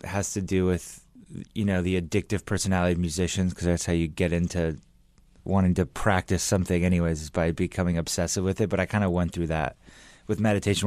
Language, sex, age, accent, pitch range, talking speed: English, male, 30-49, American, 85-95 Hz, 205 wpm